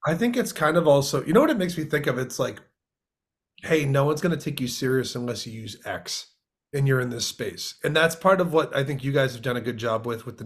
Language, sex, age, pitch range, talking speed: English, male, 30-49, 125-155 Hz, 295 wpm